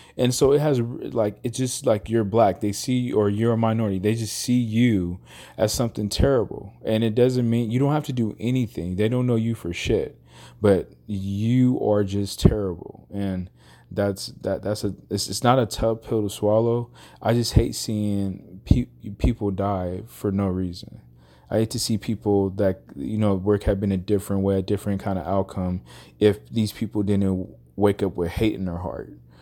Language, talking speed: English, 200 wpm